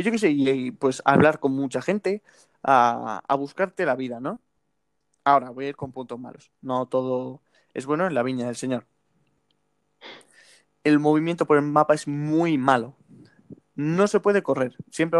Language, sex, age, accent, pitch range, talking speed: Spanish, male, 20-39, Spanish, 130-165 Hz, 175 wpm